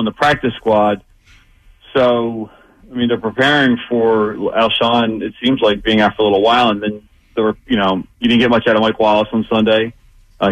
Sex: male